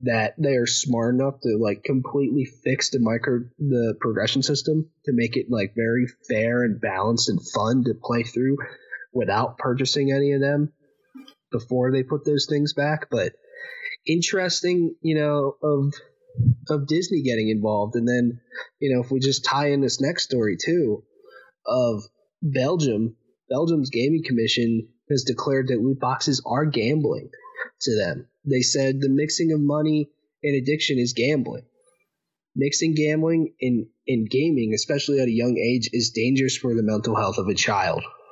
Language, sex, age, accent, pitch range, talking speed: English, male, 20-39, American, 120-150 Hz, 160 wpm